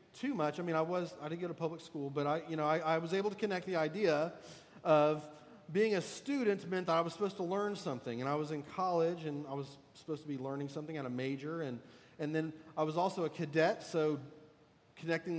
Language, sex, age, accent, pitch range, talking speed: English, male, 40-59, American, 145-170 Hz, 240 wpm